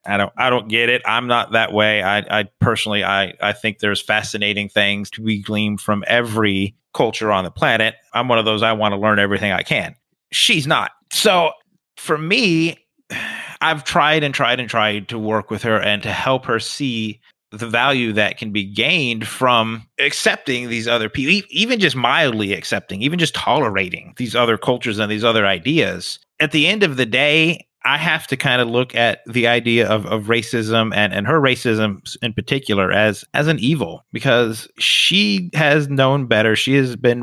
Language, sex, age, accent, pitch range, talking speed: English, male, 30-49, American, 110-130 Hz, 195 wpm